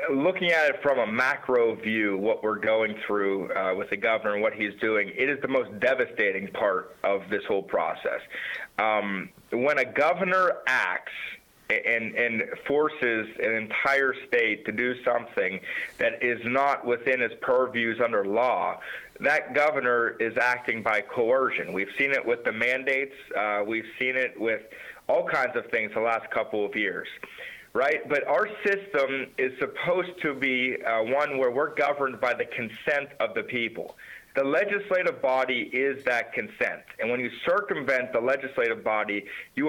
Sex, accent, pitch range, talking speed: male, American, 115-170 Hz, 165 wpm